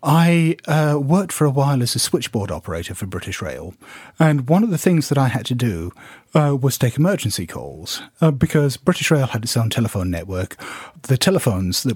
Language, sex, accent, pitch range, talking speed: English, male, British, 105-155 Hz, 200 wpm